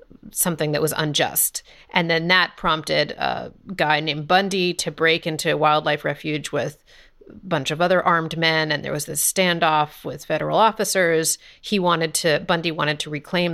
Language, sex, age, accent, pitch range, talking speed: English, female, 30-49, American, 150-180 Hz, 175 wpm